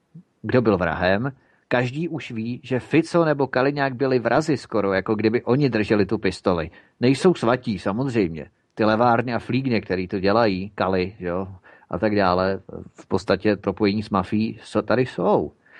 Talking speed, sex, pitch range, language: 165 wpm, male, 95-125 Hz, Czech